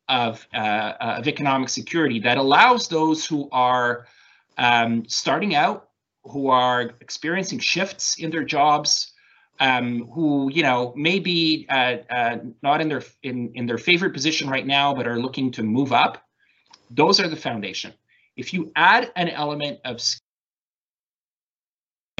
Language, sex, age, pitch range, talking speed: English, male, 30-49, 120-160 Hz, 150 wpm